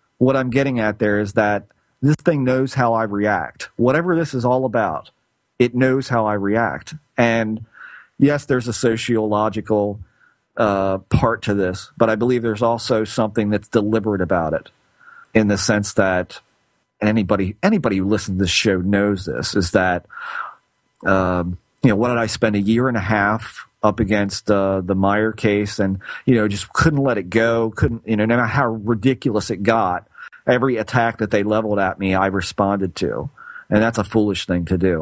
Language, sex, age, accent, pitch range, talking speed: English, male, 40-59, American, 100-125 Hz, 190 wpm